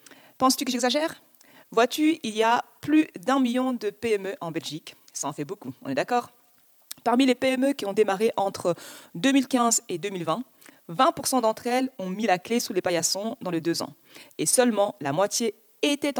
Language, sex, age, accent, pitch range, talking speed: French, female, 40-59, French, 190-255 Hz, 185 wpm